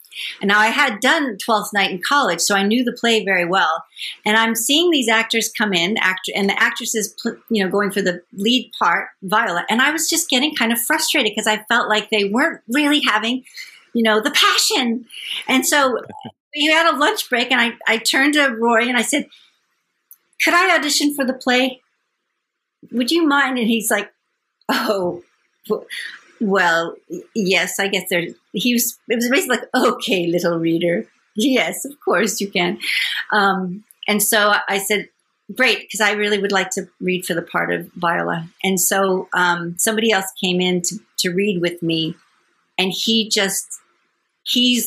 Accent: American